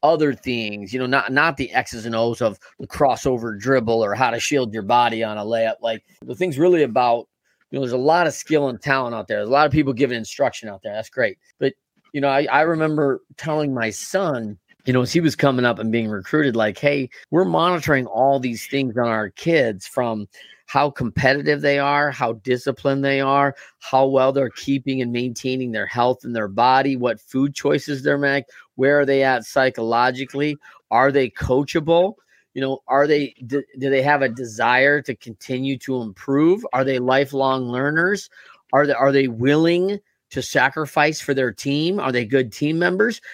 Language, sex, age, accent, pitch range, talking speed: English, male, 30-49, American, 125-150 Hz, 200 wpm